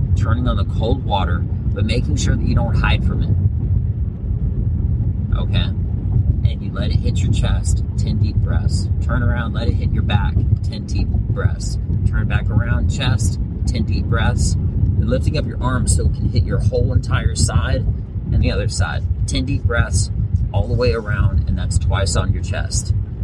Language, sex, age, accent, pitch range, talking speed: English, male, 30-49, American, 95-105 Hz, 185 wpm